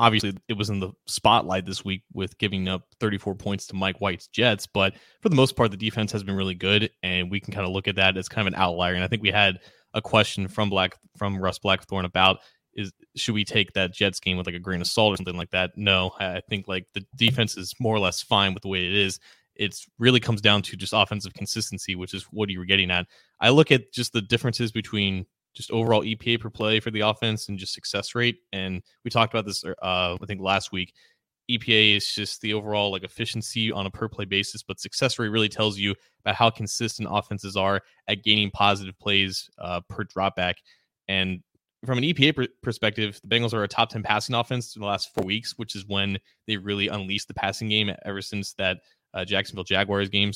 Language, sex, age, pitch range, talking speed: English, male, 20-39, 95-110 Hz, 235 wpm